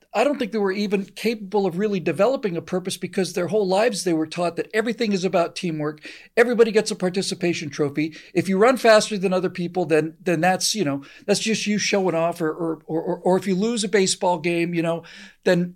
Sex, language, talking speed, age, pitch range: male, English, 225 wpm, 50-69, 170-215 Hz